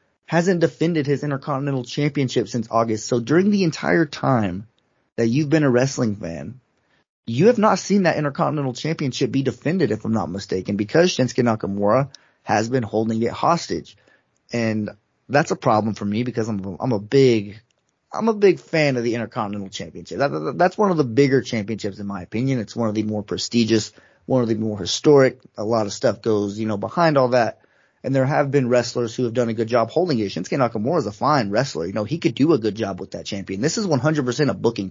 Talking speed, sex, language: 210 wpm, male, English